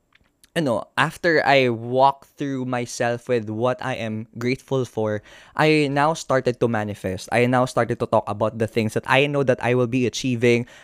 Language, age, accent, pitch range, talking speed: Filipino, 20-39, native, 125-180 Hz, 190 wpm